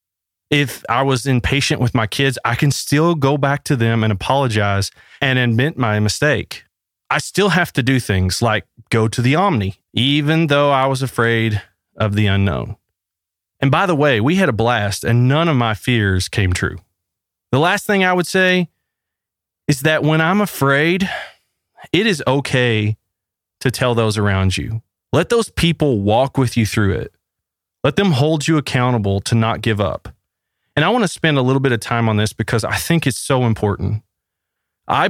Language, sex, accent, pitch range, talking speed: English, male, American, 100-140 Hz, 185 wpm